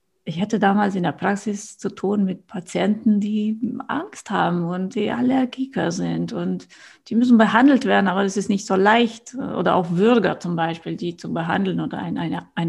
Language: German